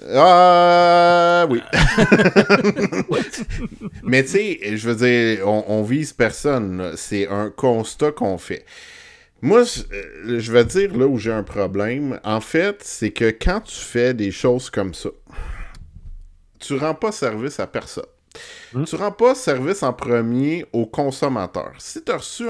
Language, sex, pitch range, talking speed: French, male, 100-145 Hz, 150 wpm